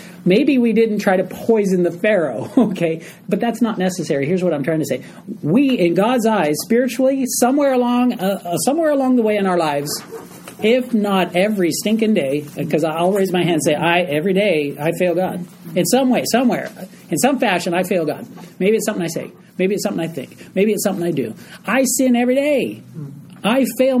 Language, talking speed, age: English, 205 wpm, 40-59